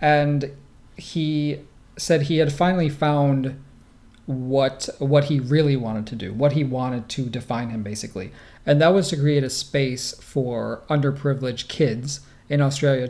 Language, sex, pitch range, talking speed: English, male, 130-150 Hz, 150 wpm